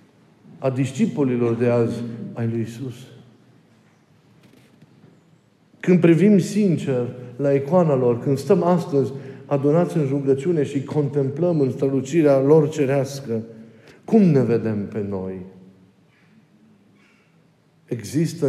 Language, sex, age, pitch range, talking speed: Romanian, male, 50-69, 120-155 Hz, 100 wpm